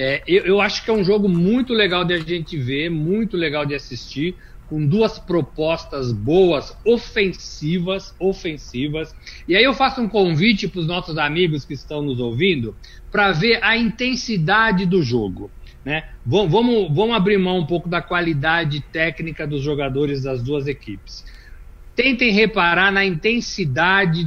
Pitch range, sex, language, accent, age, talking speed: 130-180 Hz, male, Portuguese, Brazilian, 60-79, 155 wpm